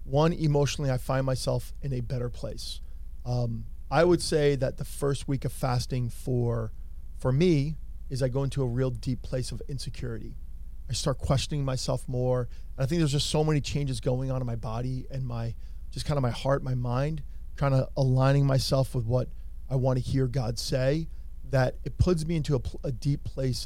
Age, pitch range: 40-59, 120-140 Hz